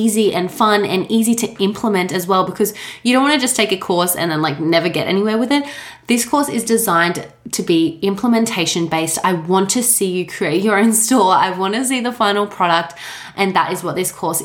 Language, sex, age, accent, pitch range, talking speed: English, female, 20-39, Australian, 185-240 Hz, 235 wpm